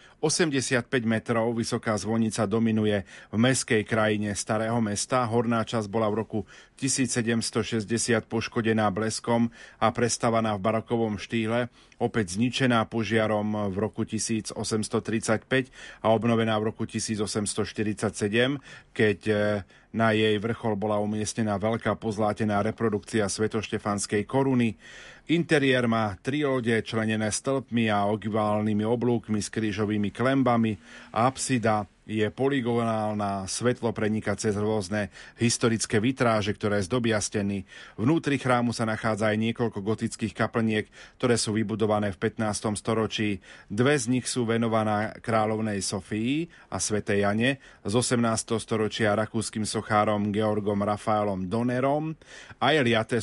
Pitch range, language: 105-120 Hz, Slovak